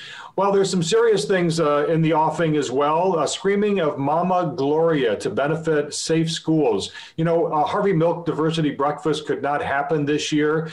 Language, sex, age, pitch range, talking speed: English, male, 40-59, 140-170 Hz, 180 wpm